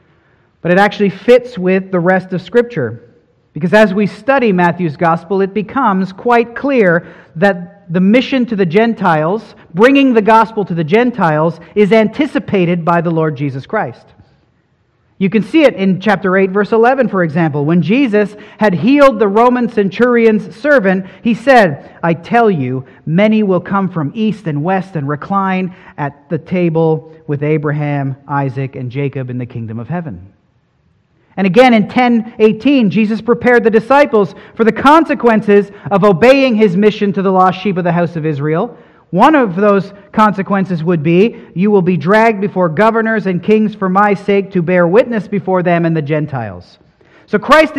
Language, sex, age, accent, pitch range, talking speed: English, male, 40-59, American, 175-225 Hz, 170 wpm